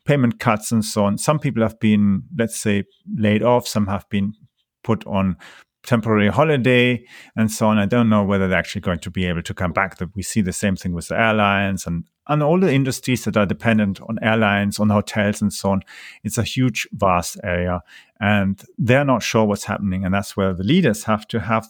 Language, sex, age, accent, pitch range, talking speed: English, male, 40-59, German, 100-120 Hz, 215 wpm